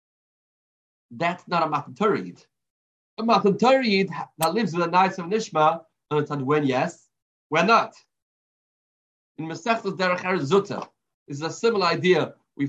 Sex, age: male, 30-49